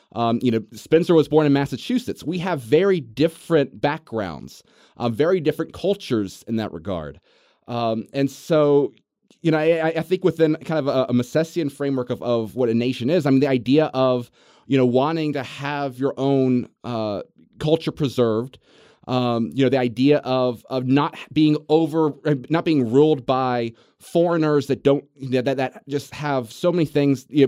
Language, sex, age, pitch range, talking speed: English, male, 30-49, 125-155 Hz, 180 wpm